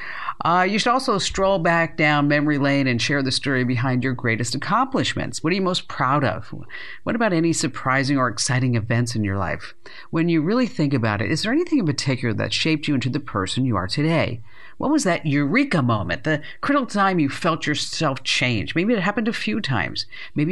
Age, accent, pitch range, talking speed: 50-69, American, 125-175 Hz, 210 wpm